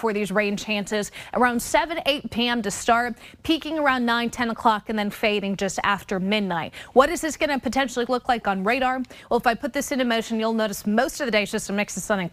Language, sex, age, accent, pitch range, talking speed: English, female, 20-39, American, 210-260 Hz, 235 wpm